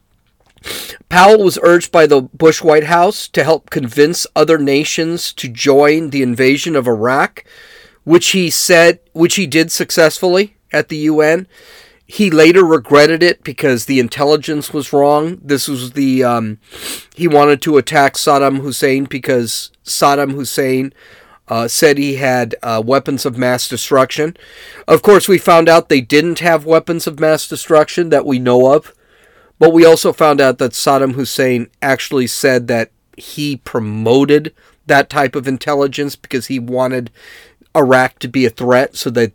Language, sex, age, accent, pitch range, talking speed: English, male, 40-59, American, 130-160 Hz, 155 wpm